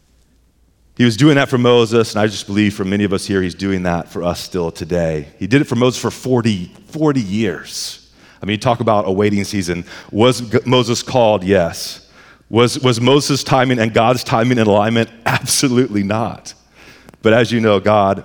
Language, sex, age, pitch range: English, male, 40-59, 100-130 Hz